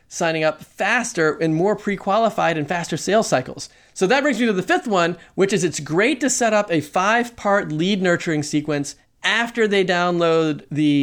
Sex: male